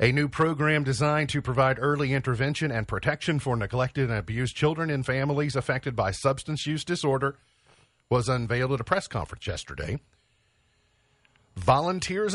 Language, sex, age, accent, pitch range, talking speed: English, male, 50-69, American, 105-140 Hz, 145 wpm